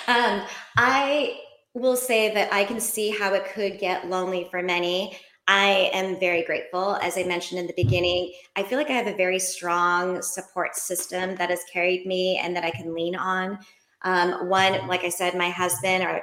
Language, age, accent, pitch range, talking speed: English, 20-39, American, 175-205 Hz, 195 wpm